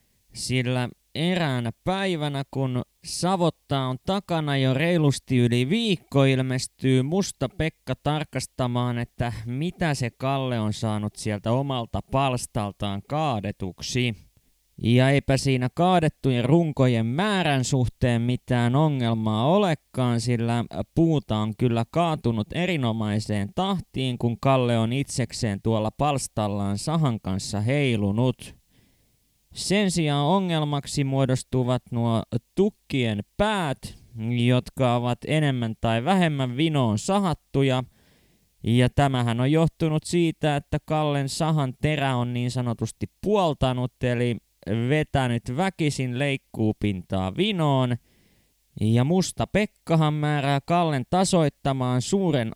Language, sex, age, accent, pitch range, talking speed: Finnish, male, 20-39, native, 115-155 Hz, 105 wpm